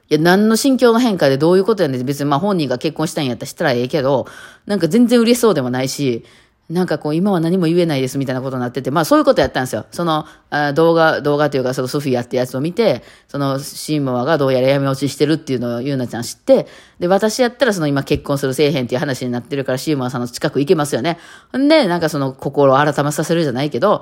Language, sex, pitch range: Japanese, female, 130-180 Hz